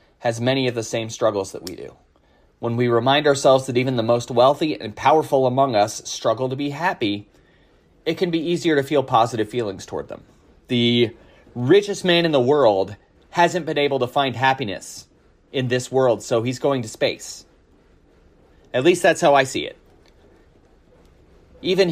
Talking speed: 170 wpm